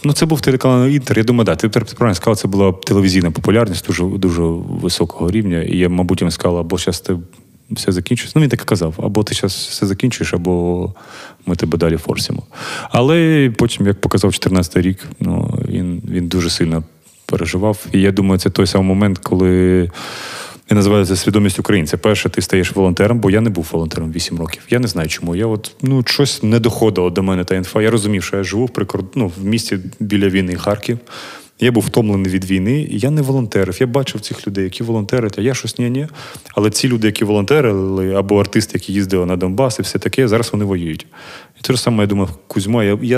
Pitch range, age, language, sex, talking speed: 90-115 Hz, 30-49, Ukrainian, male, 210 wpm